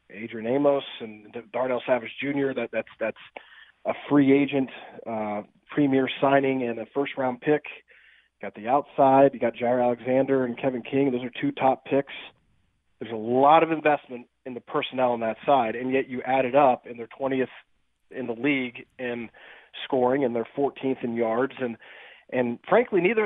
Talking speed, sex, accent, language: 180 wpm, male, American, English